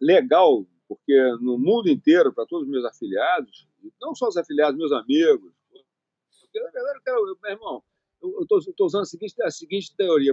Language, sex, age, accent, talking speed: Portuguese, male, 40-59, Brazilian, 180 wpm